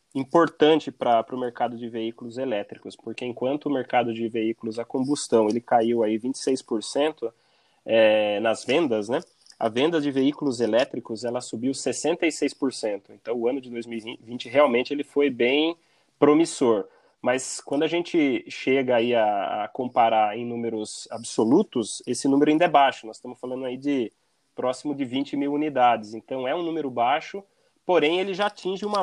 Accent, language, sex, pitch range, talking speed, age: Brazilian, Portuguese, male, 120-155 Hz, 160 wpm, 20-39